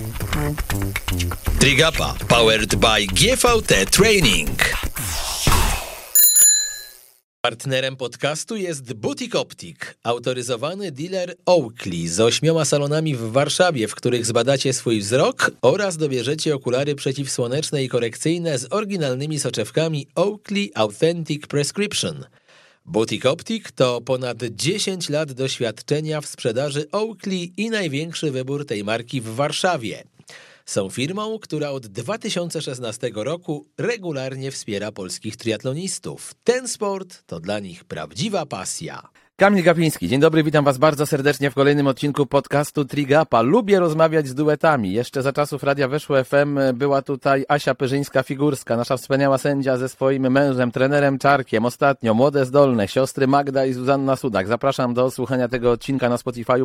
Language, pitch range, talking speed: Polish, 120-155 Hz, 125 wpm